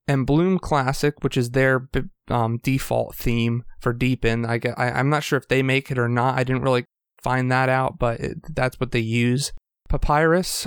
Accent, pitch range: American, 125-145 Hz